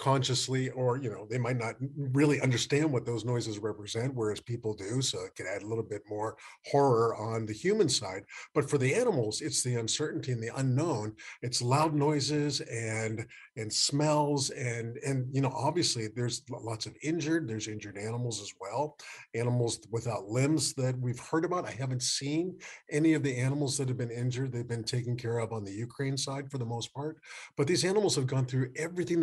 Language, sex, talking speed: English, male, 200 wpm